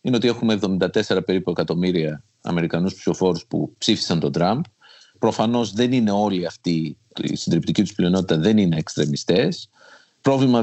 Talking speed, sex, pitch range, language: 140 wpm, male, 85-110 Hz, Greek